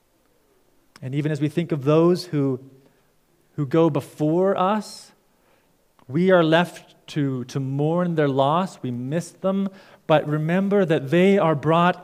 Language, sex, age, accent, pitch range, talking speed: English, male, 40-59, American, 140-180 Hz, 145 wpm